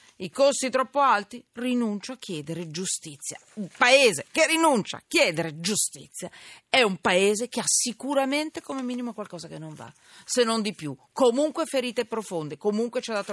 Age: 40-59